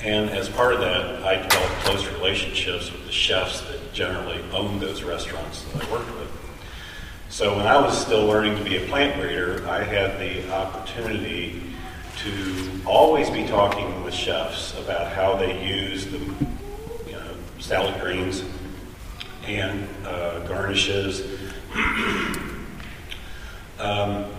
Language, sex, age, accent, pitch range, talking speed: English, male, 40-59, American, 85-100 Hz, 130 wpm